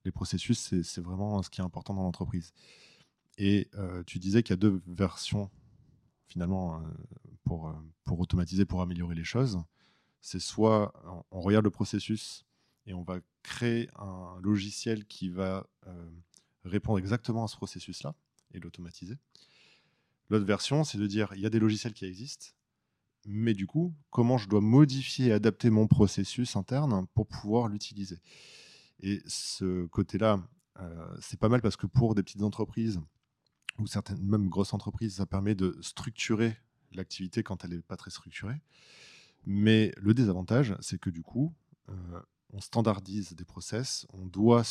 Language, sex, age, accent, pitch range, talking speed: French, male, 20-39, French, 95-115 Hz, 160 wpm